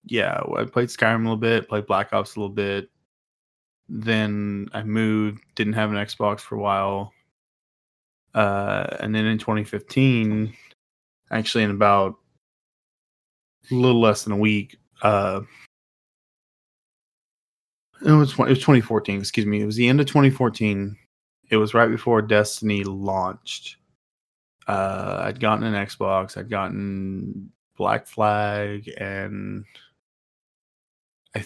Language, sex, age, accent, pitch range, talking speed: English, male, 20-39, American, 100-115 Hz, 130 wpm